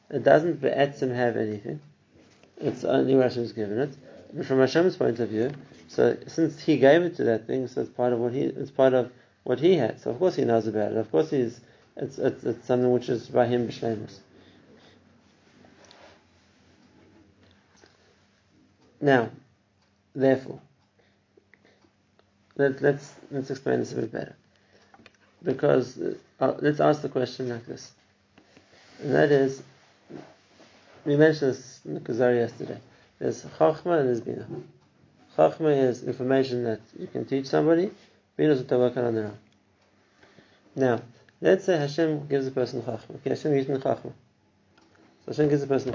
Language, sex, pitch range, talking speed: English, male, 115-140 Hz, 160 wpm